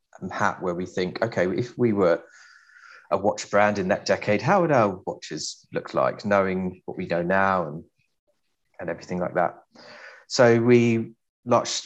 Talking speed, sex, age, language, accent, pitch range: 165 wpm, male, 30-49, English, British, 90-100 Hz